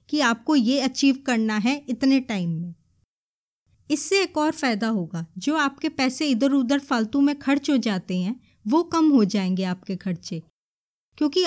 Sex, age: female, 20-39